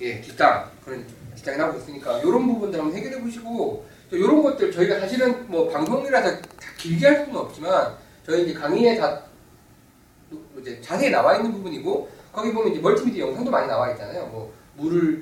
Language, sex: Korean, male